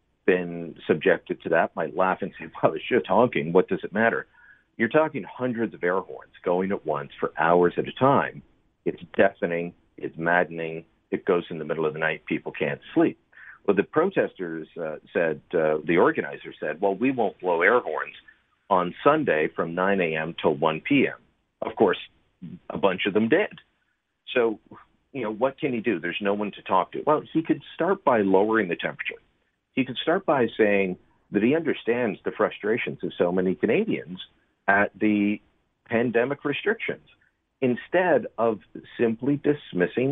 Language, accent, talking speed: English, American, 175 wpm